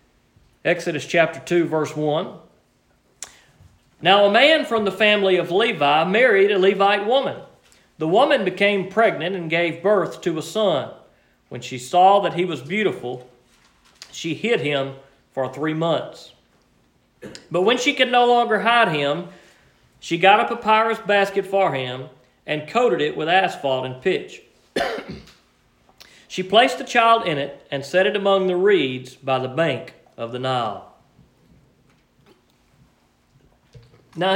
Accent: American